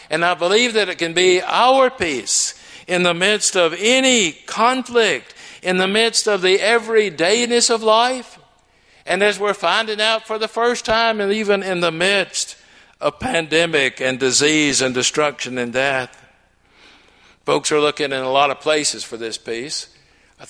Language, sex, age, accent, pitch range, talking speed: English, male, 60-79, American, 140-210 Hz, 165 wpm